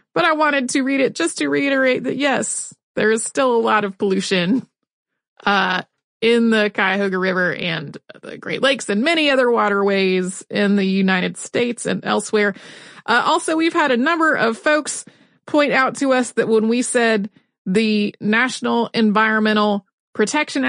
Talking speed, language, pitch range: 165 wpm, English, 195-250 Hz